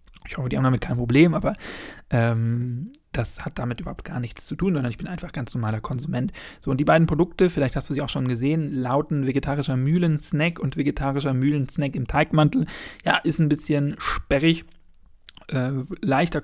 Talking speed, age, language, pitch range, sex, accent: 195 wpm, 40-59, German, 130-160 Hz, male, German